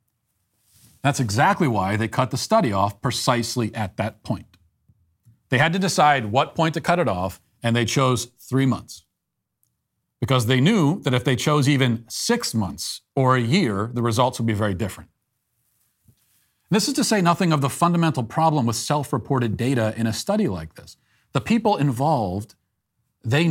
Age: 40-59